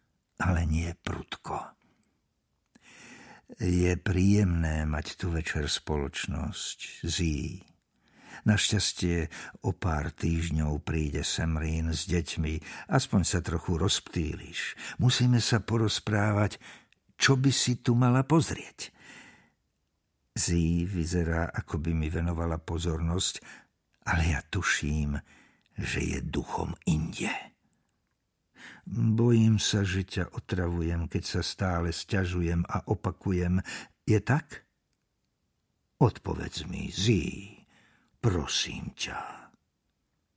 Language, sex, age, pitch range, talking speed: Slovak, male, 60-79, 85-125 Hz, 95 wpm